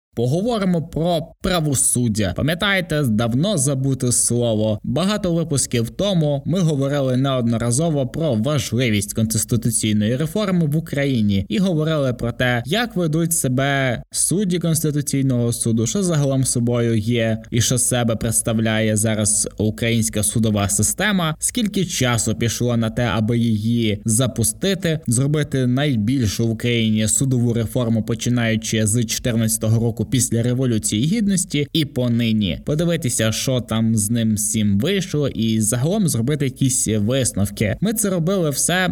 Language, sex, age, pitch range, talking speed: Ukrainian, male, 20-39, 115-155 Hz, 125 wpm